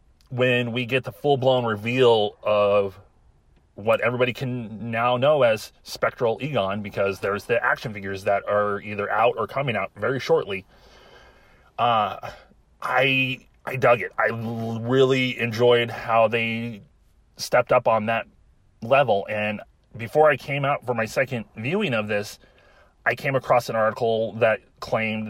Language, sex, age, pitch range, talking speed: English, male, 30-49, 105-130 Hz, 145 wpm